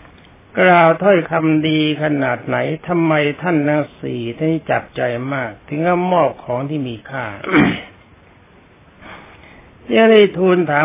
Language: Thai